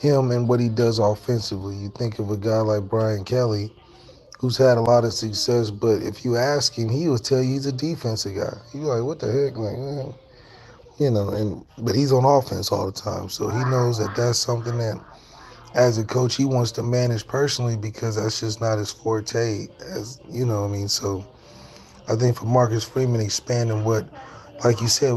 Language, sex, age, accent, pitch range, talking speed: English, male, 30-49, American, 110-130 Hz, 210 wpm